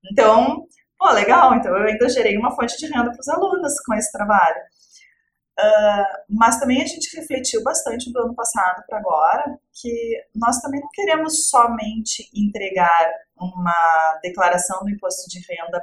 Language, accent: English, Brazilian